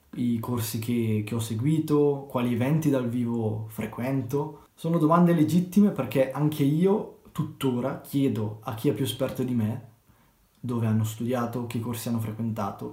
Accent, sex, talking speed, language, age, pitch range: native, male, 155 wpm, Italian, 20-39, 115-150 Hz